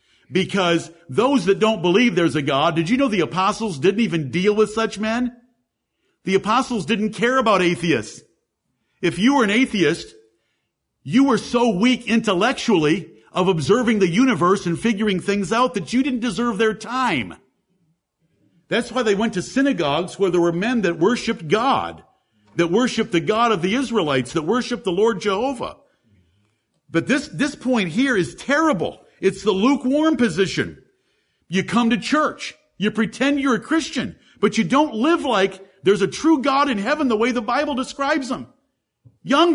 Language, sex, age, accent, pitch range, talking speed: English, male, 50-69, American, 185-260 Hz, 170 wpm